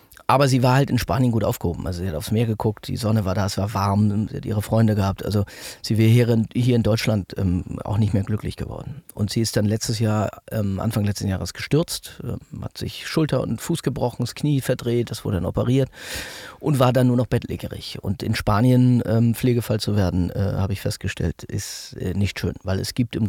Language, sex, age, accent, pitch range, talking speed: German, male, 40-59, German, 100-125 Hz, 210 wpm